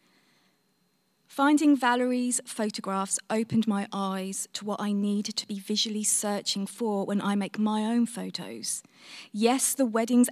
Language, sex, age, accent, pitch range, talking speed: English, female, 20-39, British, 205-240 Hz, 140 wpm